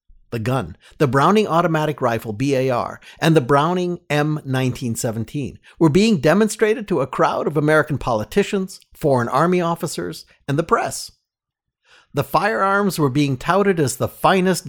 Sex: male